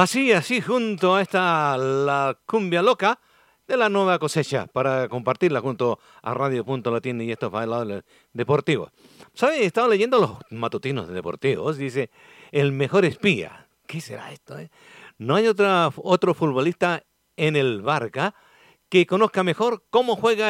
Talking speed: 150 wpm